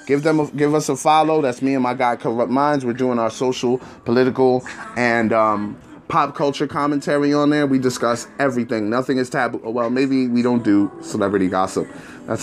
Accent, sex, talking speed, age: American, male, 190 wpm, 20-39